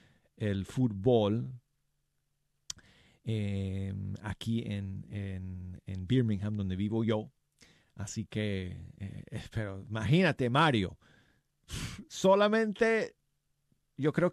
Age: 40-59